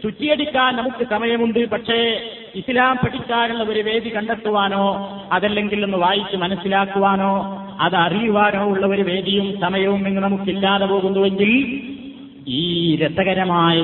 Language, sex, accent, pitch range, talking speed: Malayalam, male, native, 185-215 Hz, 95 wpm